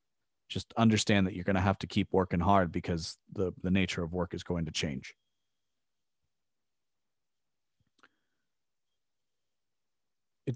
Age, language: 30-49, English